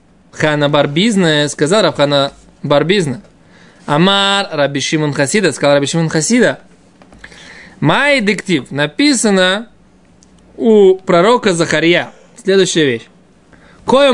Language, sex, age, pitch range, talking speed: Russian, male, 20-39, 155-210 Hz, 95 wpm